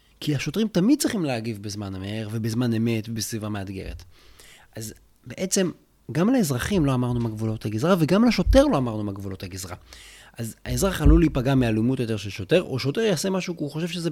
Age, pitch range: 30-49, 100-155 Hz